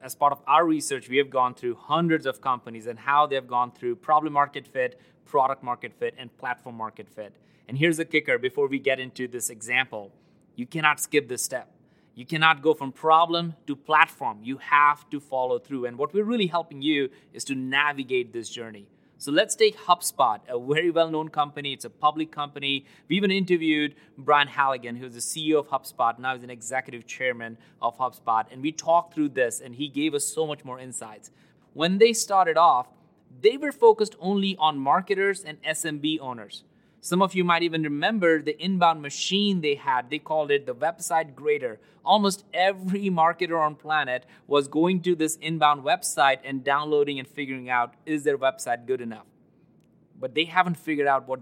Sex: male